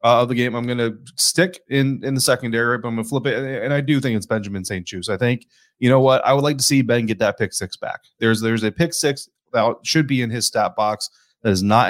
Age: 30-49